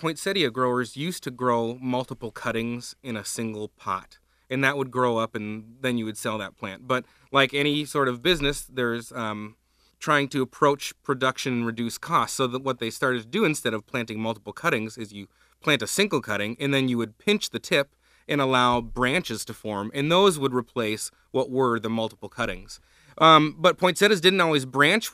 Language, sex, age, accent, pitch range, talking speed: English, male, 30-49, American, 115-145 Hz, 200 wpm